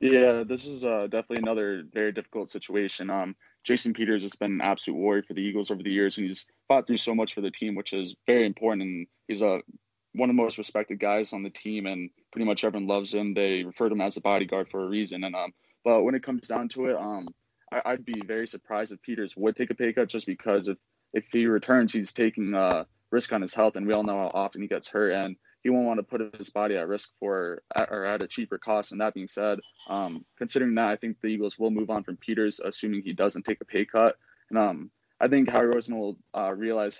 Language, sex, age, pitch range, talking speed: English, male, 20-39, 100-115 Hz, 255 wpm